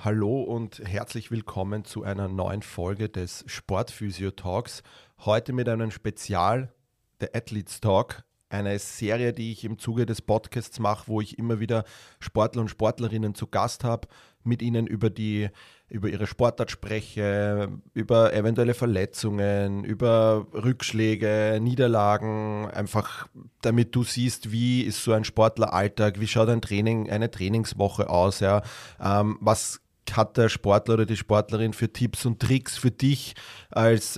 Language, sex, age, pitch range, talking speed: German, male, 30-49, 105-115 Hz, 145 wpm